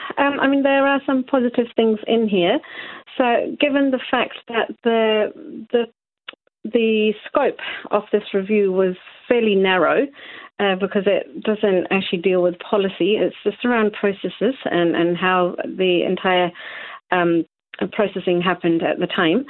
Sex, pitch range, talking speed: female, 195-235 Hz, 150 wpm